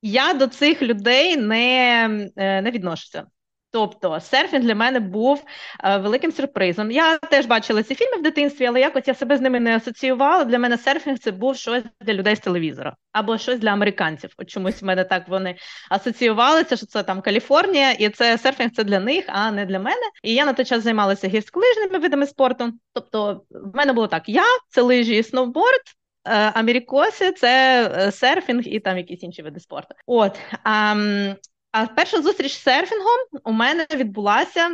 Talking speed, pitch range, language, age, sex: 180 wpm, 205-275 Hz, Ukrainian, 20-39, female